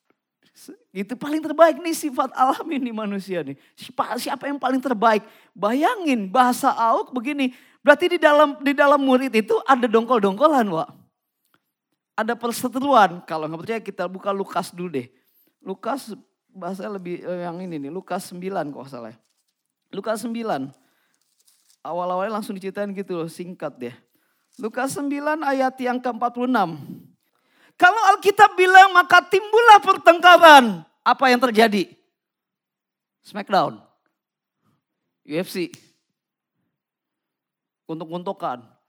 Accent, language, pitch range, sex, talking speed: native, Indonesian, 180-260 Hz, male, 115 wpm